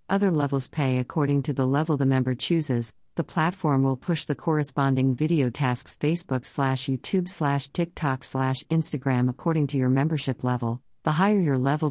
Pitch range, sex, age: 130-155 Hz, female, 50-69